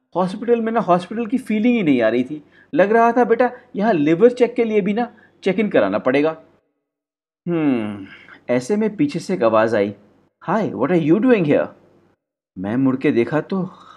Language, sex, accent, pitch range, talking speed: Hindi, male, native, 130-205 Hz, 190 wpm